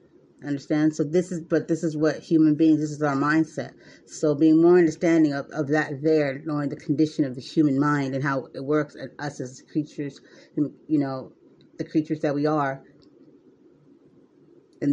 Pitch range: 140-165 Hz